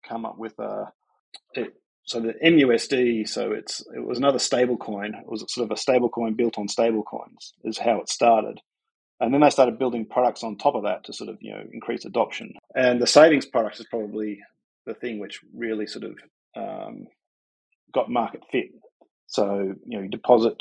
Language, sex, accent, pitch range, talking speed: English, male, Australian, 110-130 Hz, 195 wpm